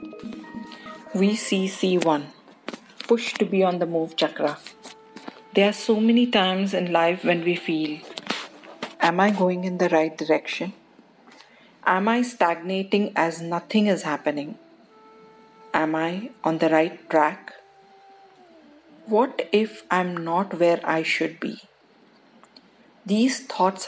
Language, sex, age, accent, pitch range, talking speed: English, female, 40-59, Indian, 170-215 Hz, 130 wpm